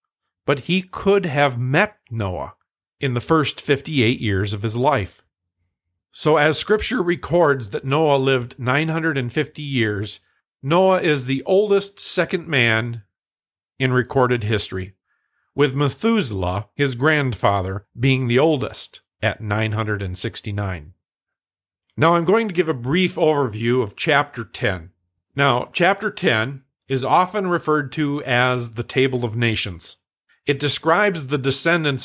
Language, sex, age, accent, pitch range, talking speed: English, male, 50-69, American, 110-150 Hz, 125 wpm